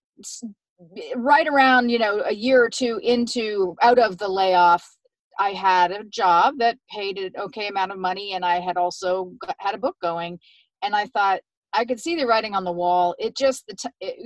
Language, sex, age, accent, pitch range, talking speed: English, female, 40-59, American, 180-225 Hz, 200 wpm